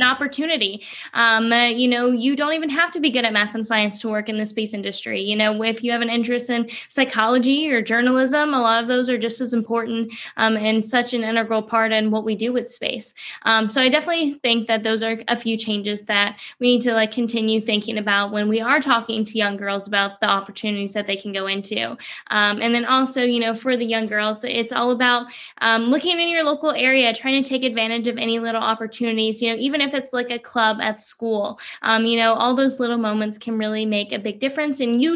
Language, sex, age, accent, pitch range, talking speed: English, female, 10-29, American, 220-250 Hz, 240 wpm